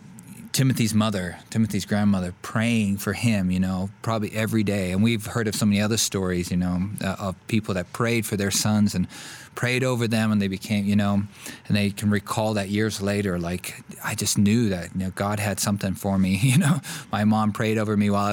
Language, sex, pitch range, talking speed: English, male, 100-115 Hz, 215 wpm